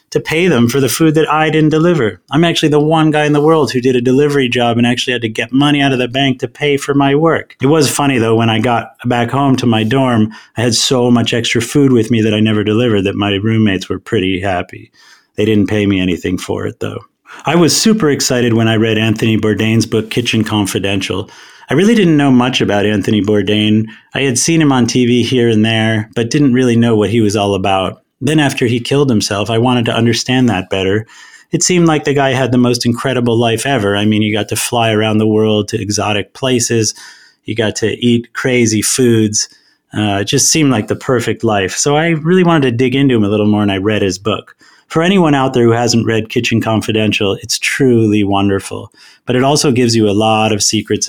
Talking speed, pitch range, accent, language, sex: 235 wpm, 105-135 Hz, American, English, male